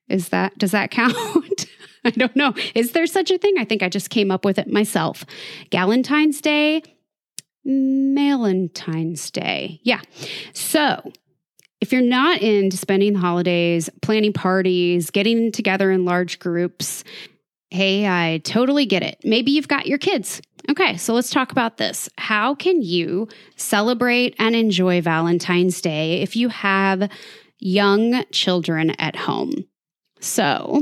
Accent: American